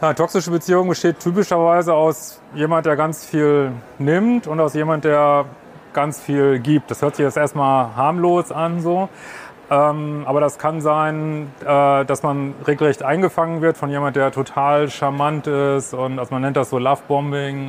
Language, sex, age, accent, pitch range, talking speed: German, male, 30-49, German, 135-155 Hz, 175 wpm